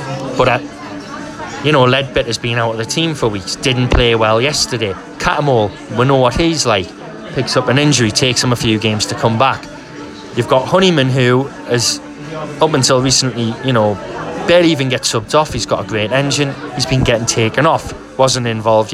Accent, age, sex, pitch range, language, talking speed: British, 20-39, male, 115-145 Hz, English, 190 wpm